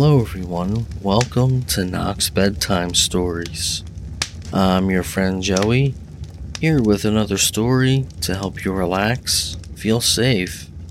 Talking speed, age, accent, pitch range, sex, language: 115 wpm, 40-59, American, 85-110 Hz, male, English